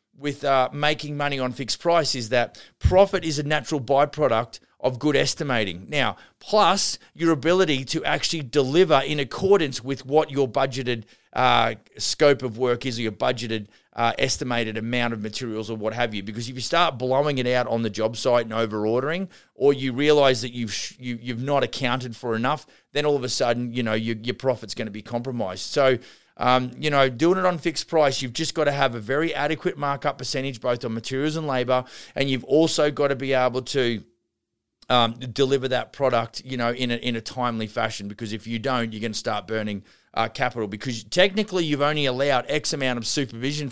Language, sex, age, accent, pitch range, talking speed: English, male, 30-49, Australian, 115-145 Hz, 205 wpm